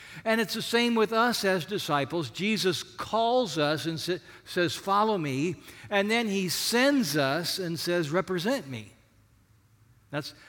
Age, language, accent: 60-79, English, American